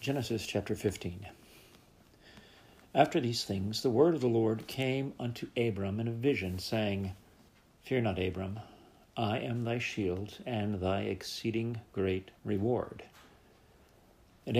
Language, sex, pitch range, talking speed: English, male, 100-120 Hz, 125 wpm